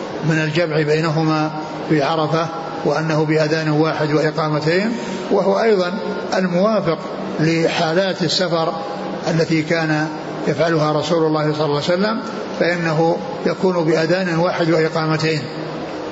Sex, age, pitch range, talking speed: male, 60-79, 155-180 Hz, 105 wpm